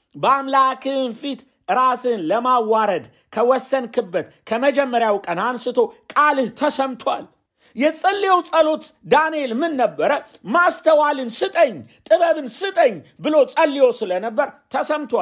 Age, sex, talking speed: 50-69, male, 75 wpm